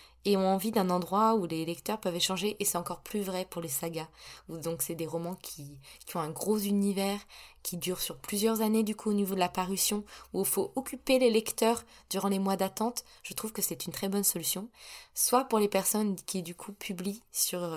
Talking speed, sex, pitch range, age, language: 225 wpm, female, 185-220 Hz, 20-39, French